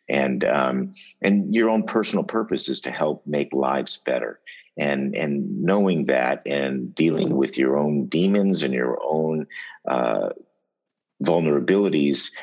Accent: American